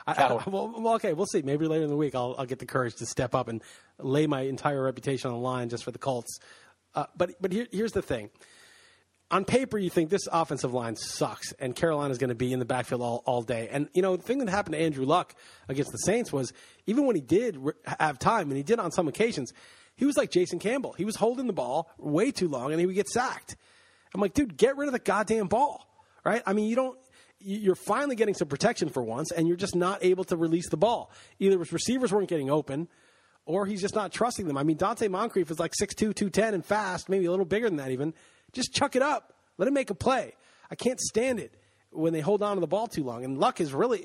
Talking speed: 255 wpm